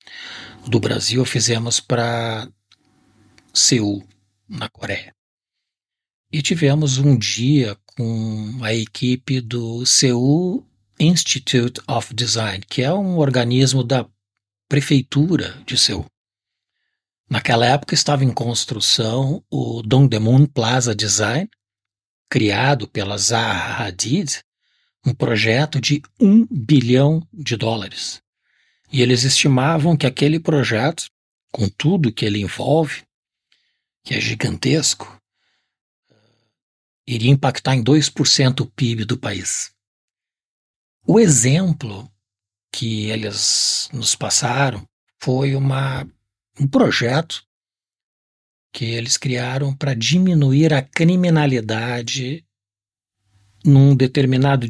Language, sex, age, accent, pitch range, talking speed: Portuguese, male, 60-79, Brazilian, 110-140 Hz, 95 wpm